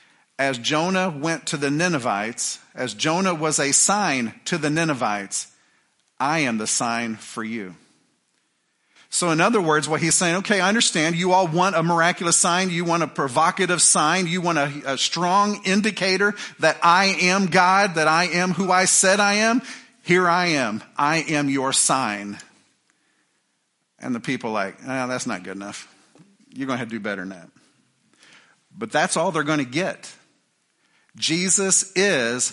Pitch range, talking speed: 135-185 Hz, 170 wpm